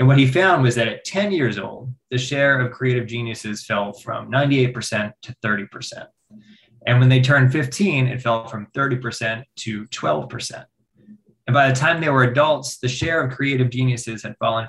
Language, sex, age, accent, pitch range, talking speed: English, male, 20-39, American, 110-130 Hz, 185 wpm